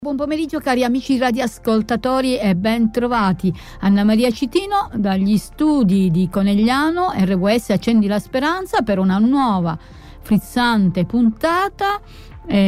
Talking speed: 115 wpm